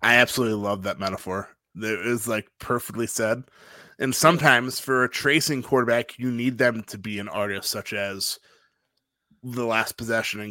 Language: English